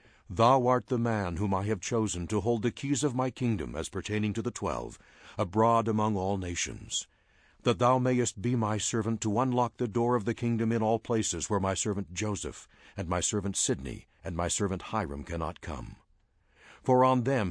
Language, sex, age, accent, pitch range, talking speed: English, male, 60-79, American, 90-120 Hz, 195 wpm